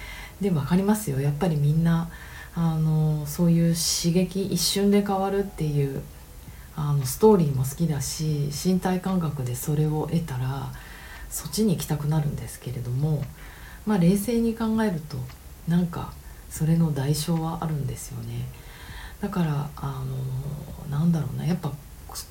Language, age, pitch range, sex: Japanese, 40-59, 140-185 Hz, female